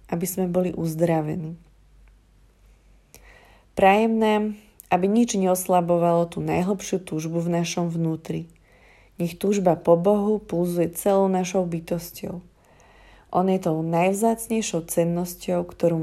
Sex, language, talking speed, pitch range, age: female, Slovak, 110 wpm, 170-195 Hz, 30-49